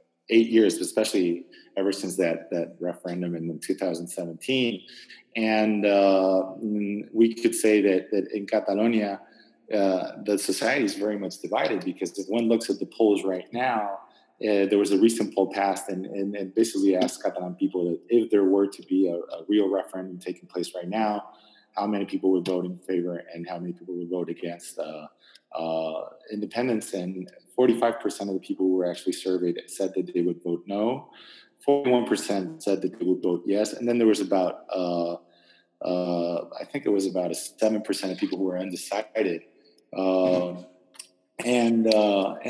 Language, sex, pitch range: English, male, 90-115 Hz